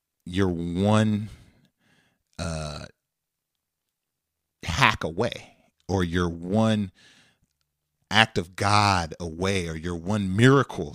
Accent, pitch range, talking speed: American, 85-110 Hz, 90 wpm